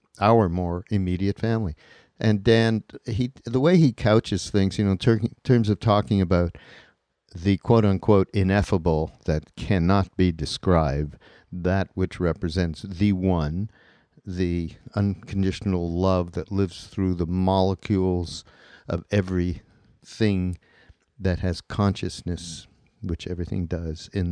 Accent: American